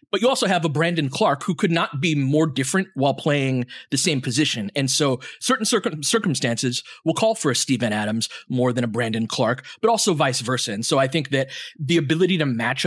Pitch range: 125-170 Hz